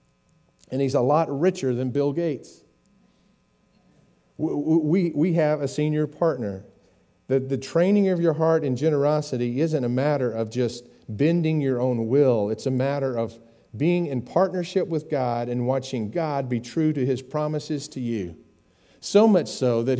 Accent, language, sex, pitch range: American, English, male, 110-155 Hz